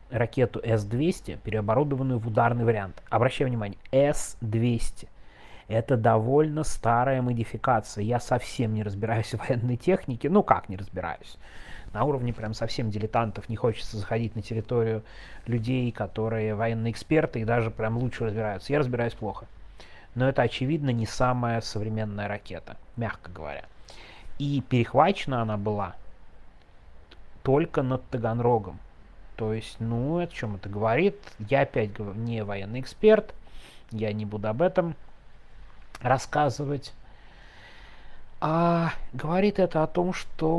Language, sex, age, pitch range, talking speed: Russian, male, 30-49, 105-130 Hz, 125 wpm